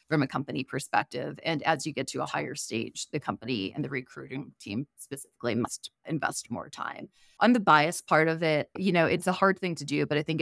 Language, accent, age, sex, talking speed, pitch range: English, American, 30-49, female, 230 wpm, 140-170 Hz